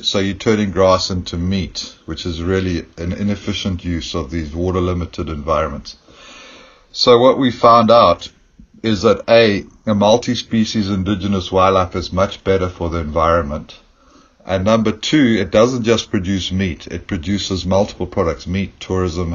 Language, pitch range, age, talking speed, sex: English, 90-105 Hz, 60-79, 150 wpm, male